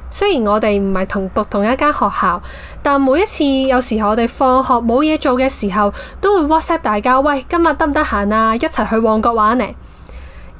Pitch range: 200-265 Hz